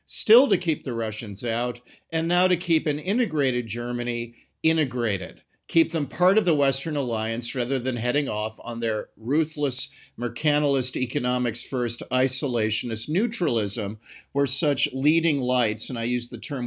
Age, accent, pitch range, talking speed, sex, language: 50-69, American, 125-170 Hz, 150 wpm, male, English